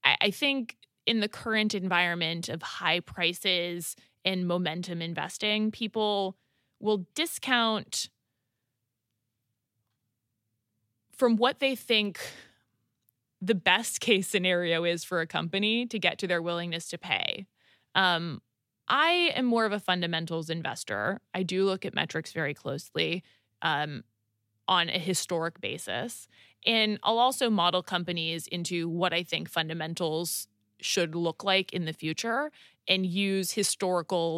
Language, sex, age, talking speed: English, female, 20-39, 125 wpm